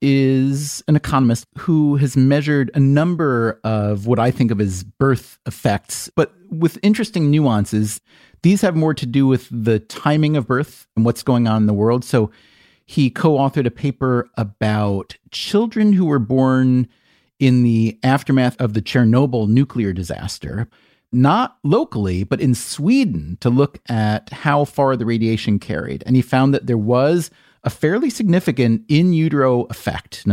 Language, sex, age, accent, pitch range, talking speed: English, male, 40-59, American, 110-140 Hz, 160 wpm